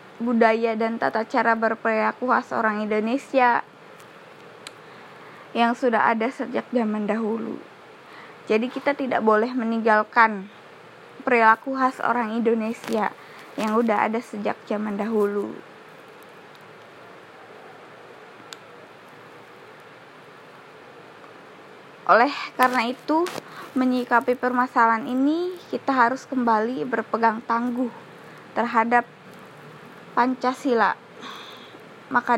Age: 20-39